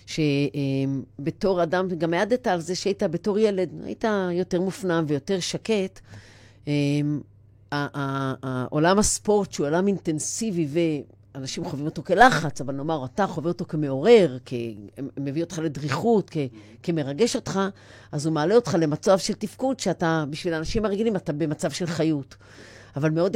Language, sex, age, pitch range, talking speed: Hebrew, female, 40-59, 145-200 Hz, 135 wpm